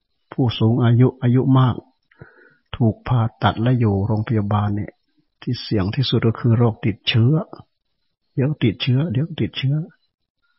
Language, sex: Thai, male